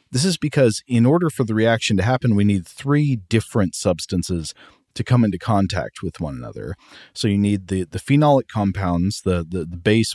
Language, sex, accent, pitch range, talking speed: English, male, American, 90-115 Hz, 195 wpm